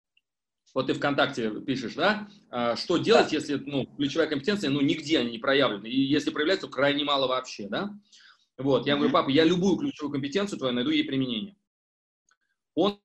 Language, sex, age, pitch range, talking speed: Russian, male, 30-49, 135-180 Hz, 175 wpm